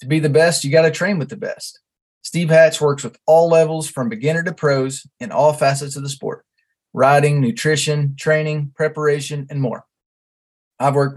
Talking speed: 190 wpm